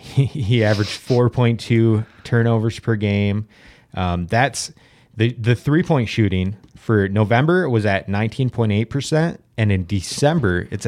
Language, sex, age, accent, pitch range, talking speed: English, male, 30-49, American, 100-125 Hz, 125 wpm